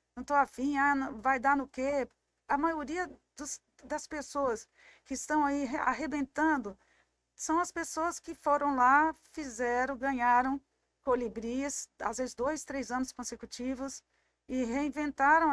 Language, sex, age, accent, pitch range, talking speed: Portuguese, female, 50-69, Brazilian, 235-290 Hz, 130 wpm